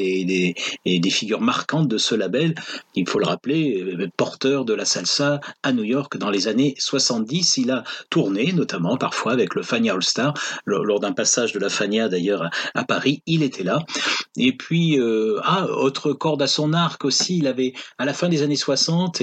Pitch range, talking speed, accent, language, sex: 115-150 Hz, 205 wpm, French, French, male